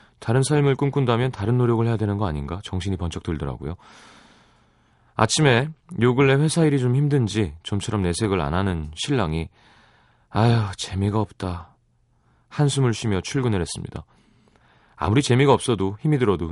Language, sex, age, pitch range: Korean, male, 30-49, 85-120 Hz